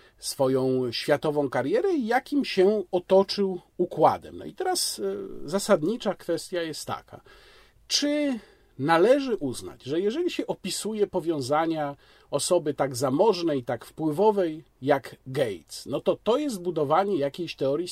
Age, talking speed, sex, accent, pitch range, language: 40-59, 125 wpm, male, native, 145-225 Hz, Polish